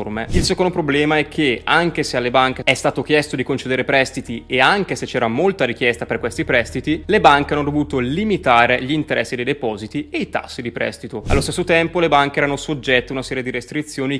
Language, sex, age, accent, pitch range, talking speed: Italian, male, 20-39, native, 115-145 Hz, 210 wpm